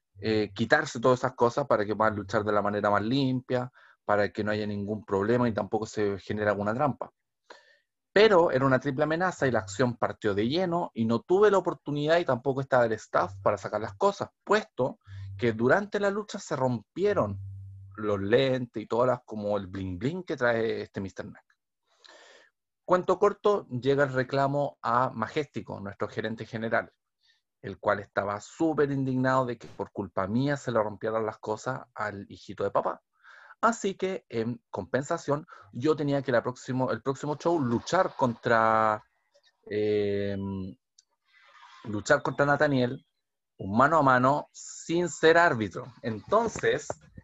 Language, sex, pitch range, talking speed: Spanish, male, 105-145 Hz, 160 wpm